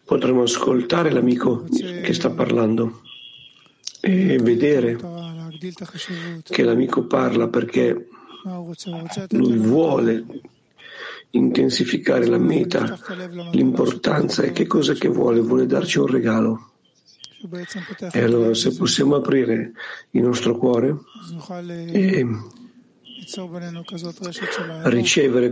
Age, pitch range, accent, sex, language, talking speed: 50-69, 120-165 Hz, native, male, Italian, 85 wpm